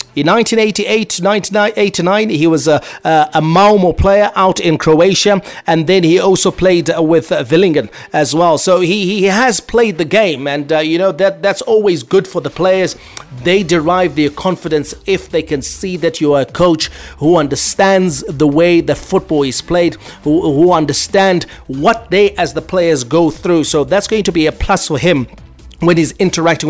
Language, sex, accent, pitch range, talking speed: English, male, South African, 155-195 Hz, 185 wpm